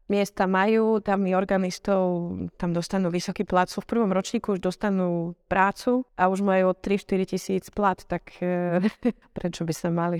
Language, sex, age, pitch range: Slovak, female, 30-49, 180-210 Hz